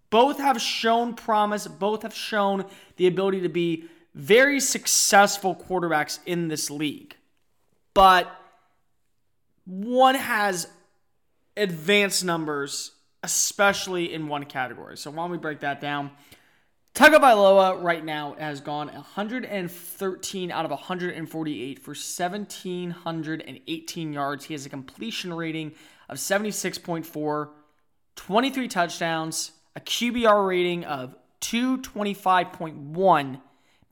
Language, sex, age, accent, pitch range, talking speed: English, male, 20-39, American, 155-205 Hz, 105 wpm